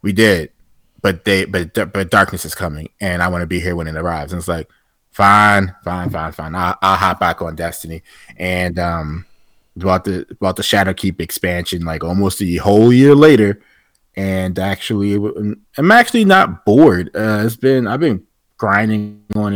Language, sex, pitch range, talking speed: English, male, 85-110 Hz, 180 wpm